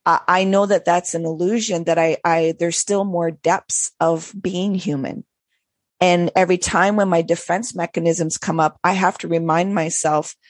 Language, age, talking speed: English, 40-59, 170 wpm